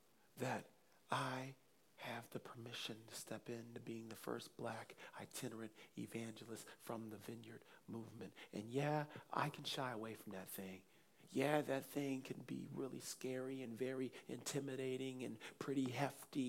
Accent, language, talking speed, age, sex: American, English, 145 wpm, 50-69, male